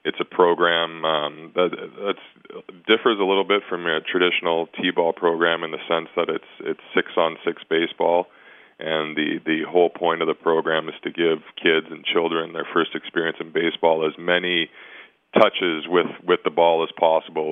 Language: English